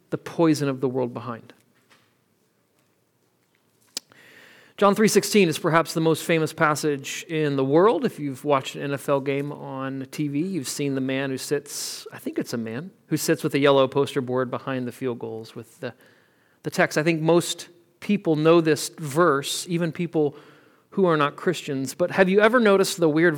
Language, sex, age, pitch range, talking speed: English, male, 40-59, 145-175 Hz, 180 wpm